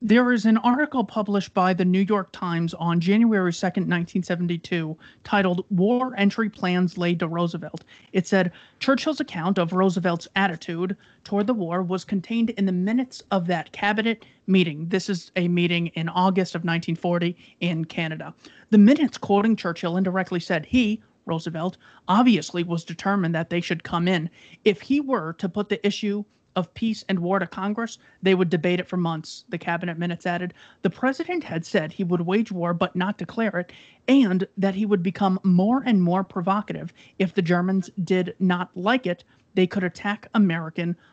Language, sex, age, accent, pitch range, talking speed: English, male, 30-49, American, 175-210 Hz, 175 wpm